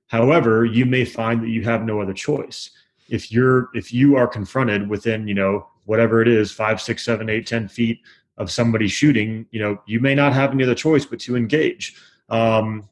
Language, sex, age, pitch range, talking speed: English, male, 30-49, 110-125 Hz, 210 wpm